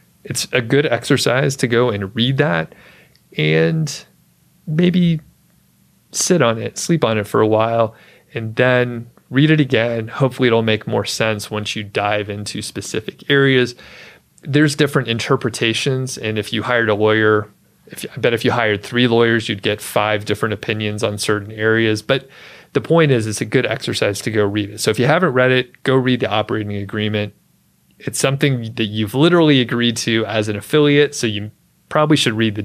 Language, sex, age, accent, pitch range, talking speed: English, male, 30-49, American, 105-130 Hz, 180 wpm